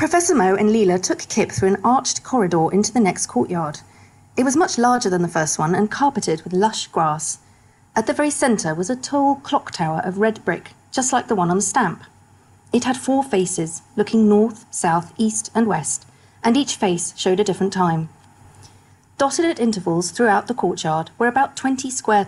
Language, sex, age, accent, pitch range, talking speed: English, female, 40-59, British, 155-225 Hz, 195 wpm